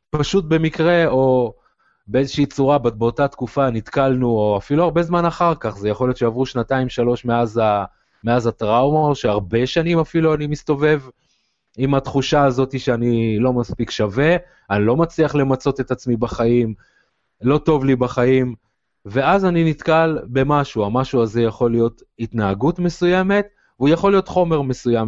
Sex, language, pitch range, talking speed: male, Hebrew, 115-150 Hz, 140 wpm